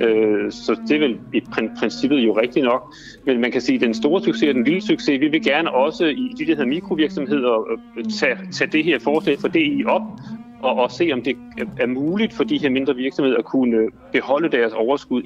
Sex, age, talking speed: male, 40-59, 220 wpm